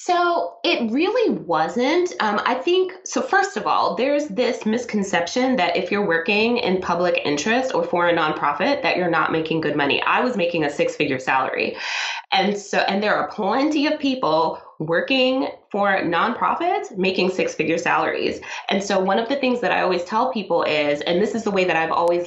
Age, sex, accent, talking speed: 20-39, female, American, 190 wpm